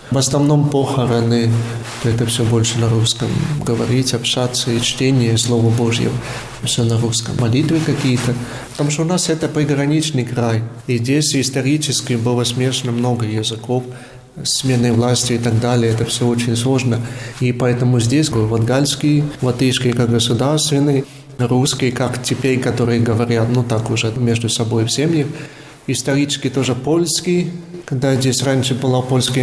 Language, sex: Russian, male